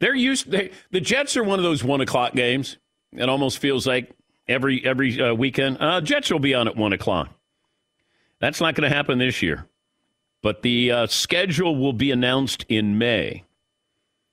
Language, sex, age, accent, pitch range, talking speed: English, male, 50-69, American, 105-135 Hz, 185 wpm